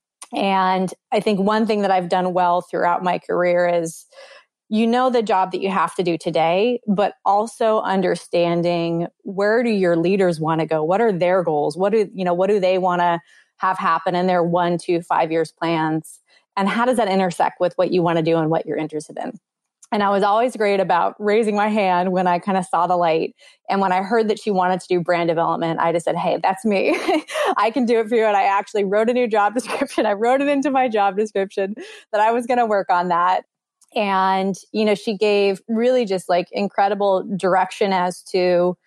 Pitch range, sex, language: 175-210 Hz, female, English